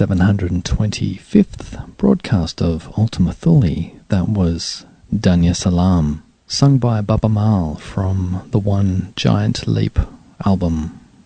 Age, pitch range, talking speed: 40-59, 90-115 Hz, 125 wpm